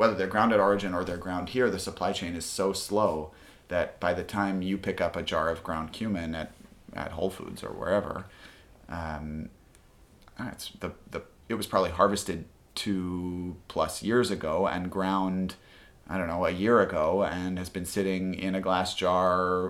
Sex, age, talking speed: male, 30-49, 185 wpm